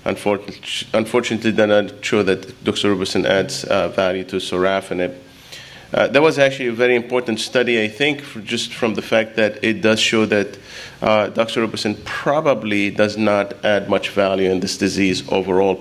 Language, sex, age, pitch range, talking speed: English, male, 30-49, 95-110 Hz, 160 wpm